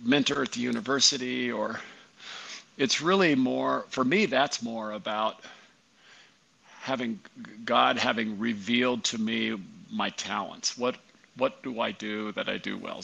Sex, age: male, 50-69